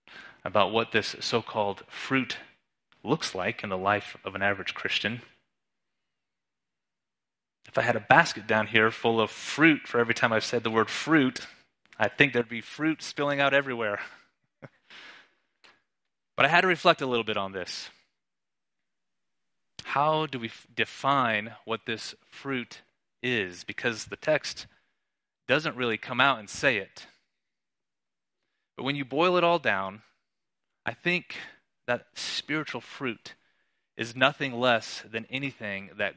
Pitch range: 110-150 Hz